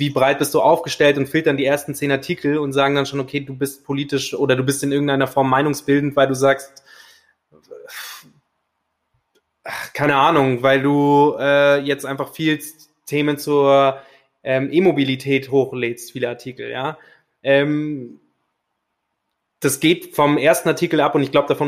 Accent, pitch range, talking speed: German, 135-150 Hz, 155 wpm